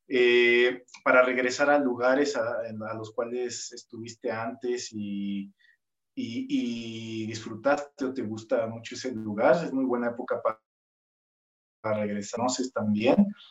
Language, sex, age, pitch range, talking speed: Spanish, male, 30-49, 115-145 Hz, 135 wpm